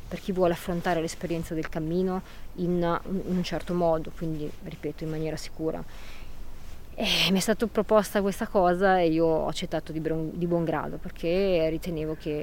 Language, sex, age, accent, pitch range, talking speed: Italian, female, 20-39, native, 160-185 Hz, 160 wpm